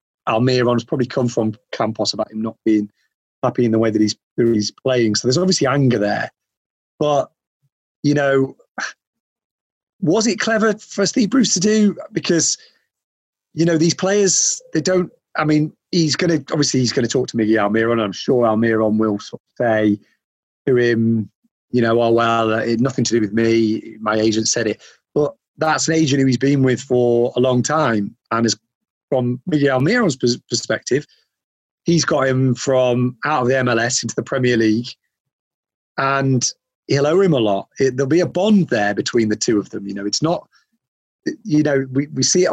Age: 30-49